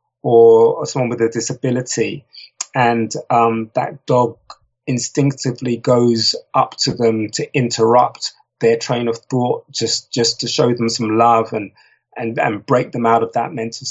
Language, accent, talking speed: English, British, 155 wpm